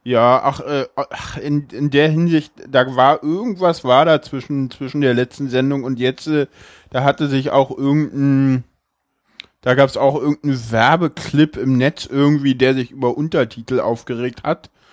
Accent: German